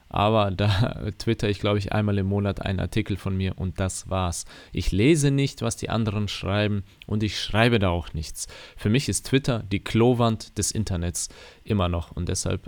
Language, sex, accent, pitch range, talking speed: German, male, German, 95-120 Hz, 195 wpm